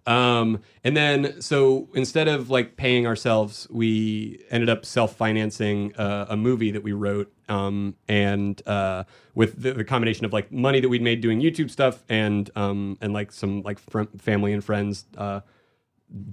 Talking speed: 165 wpm